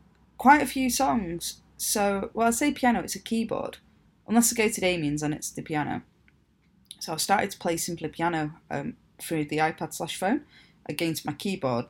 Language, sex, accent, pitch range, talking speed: English, female, British, 150-225 Hz, 185 wpm